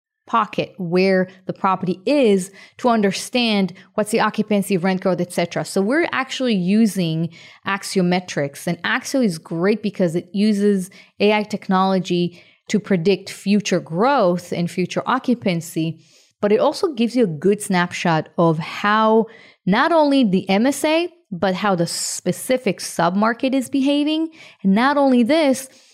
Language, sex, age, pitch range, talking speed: English, female, 30-49, 180-240 Hz, 140 wpm